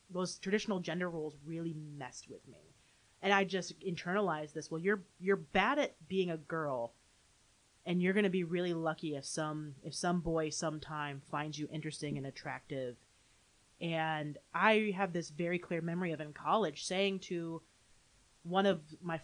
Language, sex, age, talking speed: English, female, 30-49, 170 wpm